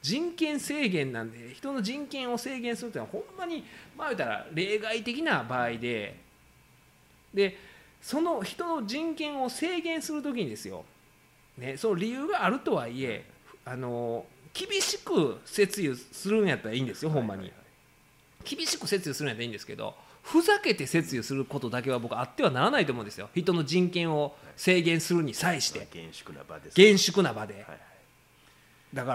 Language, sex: Japanese, male